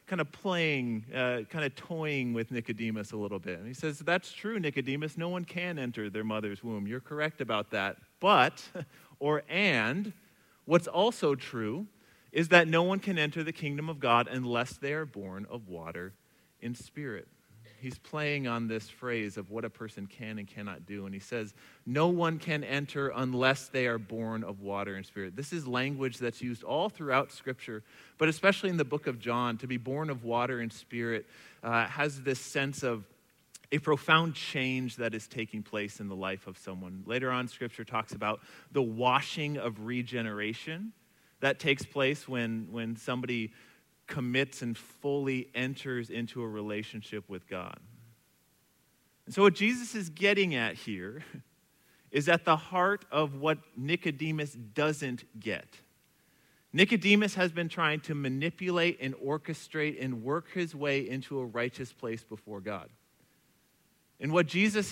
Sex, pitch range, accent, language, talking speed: male, 115-155 Hz, American, English, 170 wpm